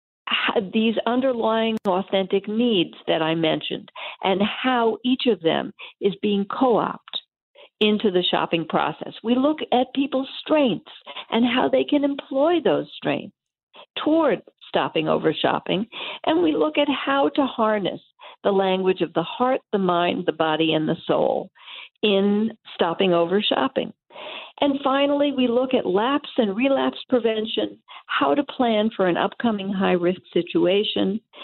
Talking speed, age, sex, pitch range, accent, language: 145 wpm, 50-69, female, 190-275 Hz, American, English